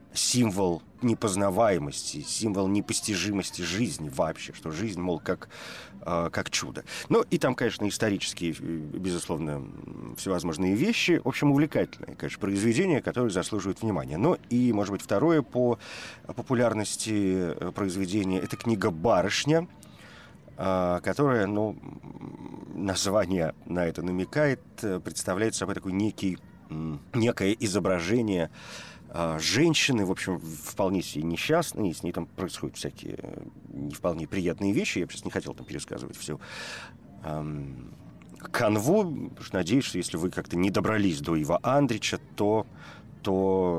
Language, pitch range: Russian, 85-110 Hz